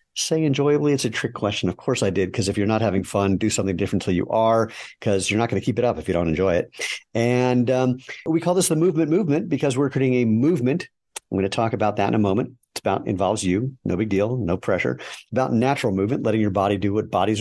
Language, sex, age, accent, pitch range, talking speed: English, male, 50-69, American, 100-125 Hz, 260 wpm